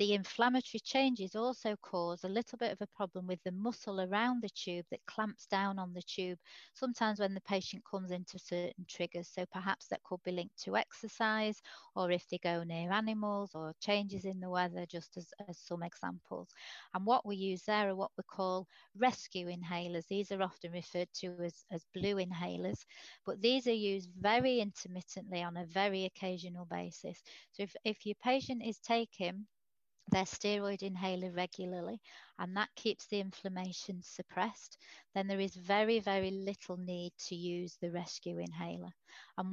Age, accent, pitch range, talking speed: 30-49, British, 175-205 Hz, 175 wpm